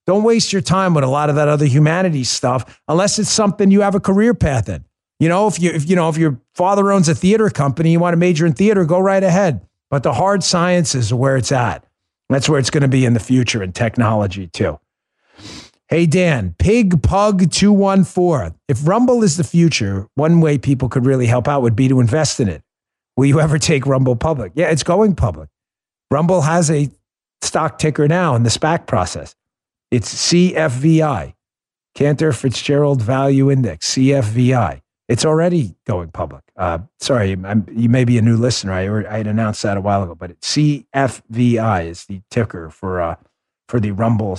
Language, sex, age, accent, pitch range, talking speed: English, male, 50-69, American, 115-170 Hz, 195 wpm